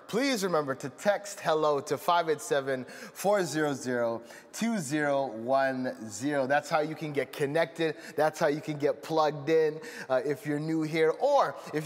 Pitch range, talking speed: 130-165 Hz, 135 wpm